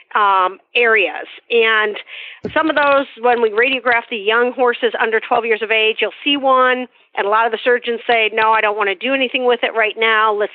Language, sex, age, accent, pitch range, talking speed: English, female, 40-59, American, 205-255 Hz, 220 wpm